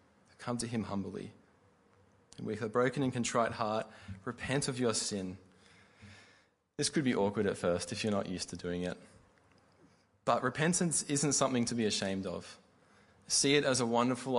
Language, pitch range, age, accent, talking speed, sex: English, 100-115 Hz, 20-39, Australian, 165 wpm, male